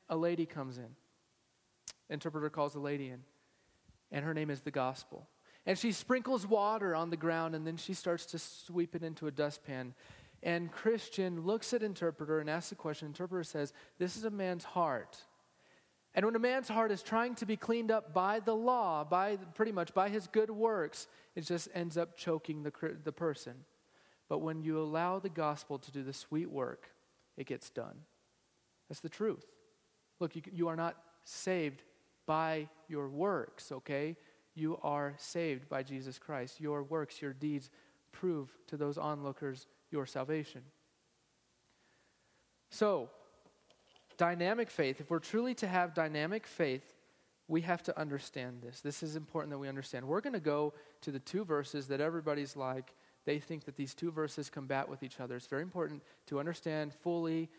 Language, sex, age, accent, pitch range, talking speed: English, male, 30-49, American, 145-175 Hz, 175 wpm